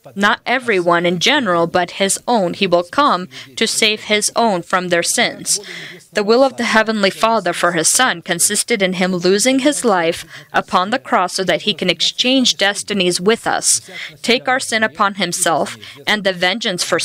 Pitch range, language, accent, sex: 180-220 Hz, English, American, female